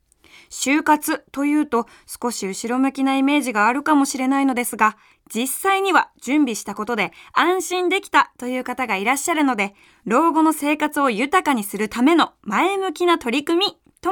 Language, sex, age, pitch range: Japanese, female, 20-39, 240-330 Hz